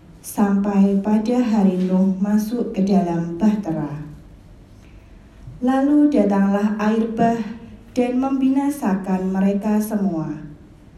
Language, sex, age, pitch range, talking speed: Indonesian, female, 20-39, 185-225 Hz, 85 wpm